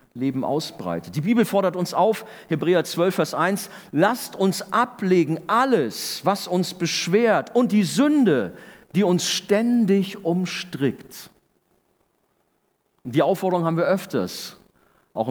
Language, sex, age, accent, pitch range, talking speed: German, male, 50-69, German, 145-195 Hz, 125 wpm